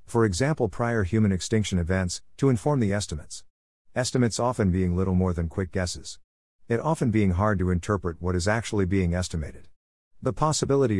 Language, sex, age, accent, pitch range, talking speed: English, male, 50-69, American, 90-115 Hz, 170 wpm